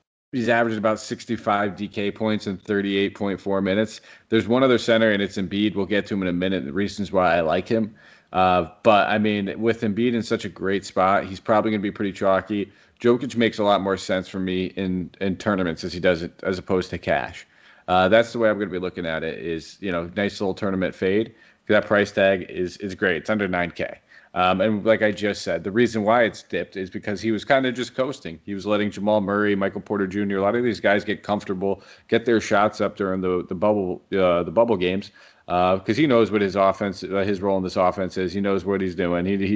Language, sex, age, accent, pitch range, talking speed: English, male, 30-49, American, 95-110 Hz, 245 wpm